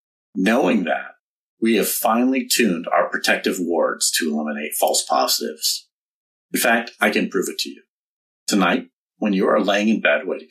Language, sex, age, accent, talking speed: English, male, 40-59, American, 165 wpm